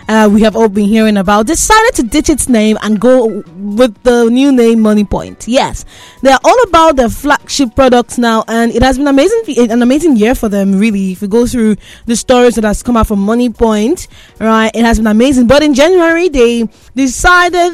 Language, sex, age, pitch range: English, female, 20-39, 220-275 Hz